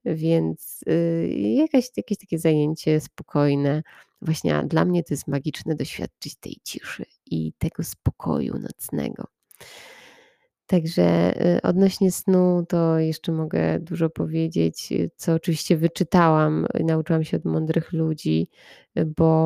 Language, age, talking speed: Polish, 20-39, 110 wpm